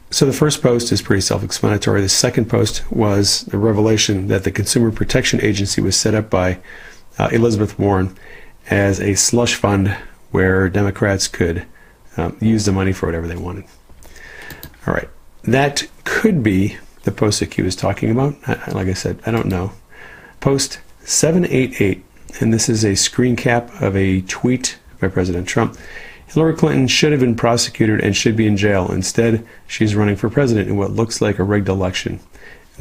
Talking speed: 175 wpm